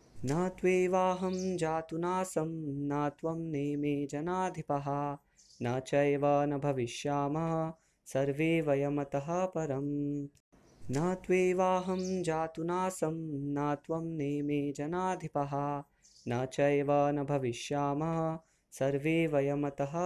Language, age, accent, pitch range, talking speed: Hindi, 20-39, native, 145-165 Hz, 45 wpm